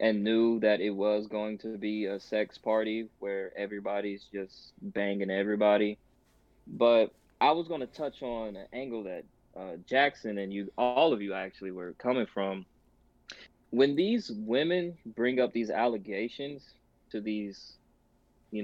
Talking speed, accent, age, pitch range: 150 wpm, American, 20-39, 100-120 Hz